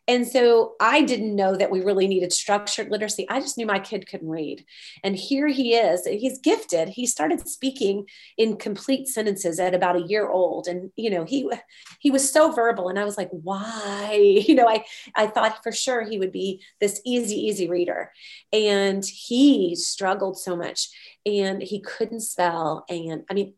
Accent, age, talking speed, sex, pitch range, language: American, 30-49, 190 wpm, female, 180-225 Hz, English